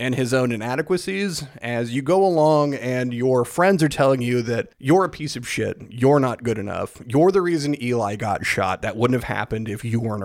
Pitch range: 115-155 Hz